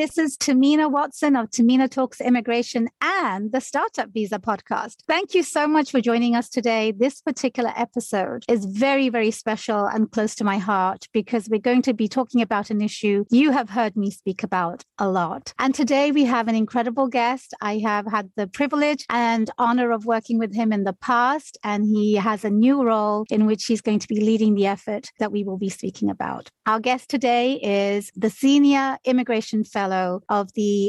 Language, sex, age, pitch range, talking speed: English, female, 30-49, 215-275 Hz, 200 wpm